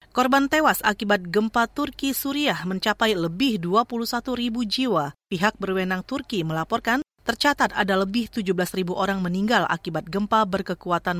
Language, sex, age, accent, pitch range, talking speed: Indonesian, female, 30-49, native, 185-255 Hz, 135 wpm